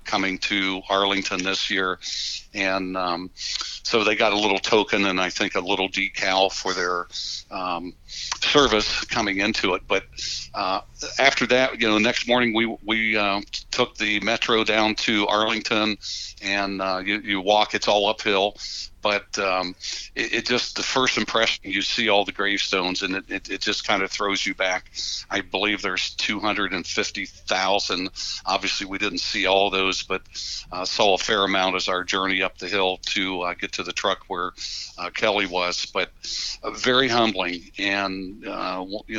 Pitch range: 95-105 Hz